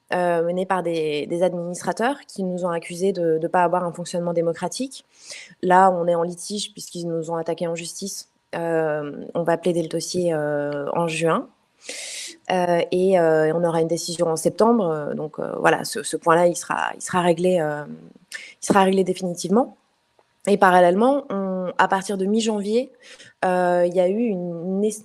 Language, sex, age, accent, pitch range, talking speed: French, female, 20-39, French, 170-200 Hz, 185 wpm